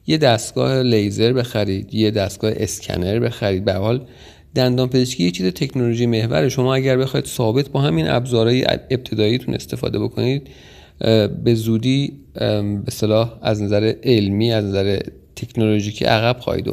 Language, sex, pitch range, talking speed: Persian, male, 105-130 Hz, 135 wpm